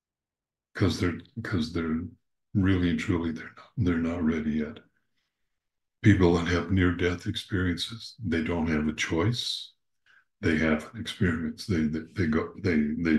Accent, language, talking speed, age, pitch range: American, English, 155 wpm, 60-79, 85-105 Hz